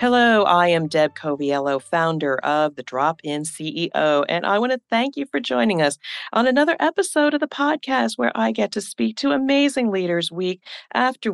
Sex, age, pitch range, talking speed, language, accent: female, 40-59, 160-225 Hz, 185 wpm, English, American